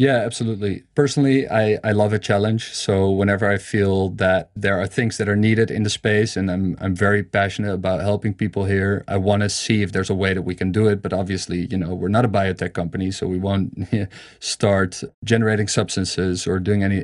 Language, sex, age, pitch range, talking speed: English, male, 30-49, 95-110 Hz, 220 wpm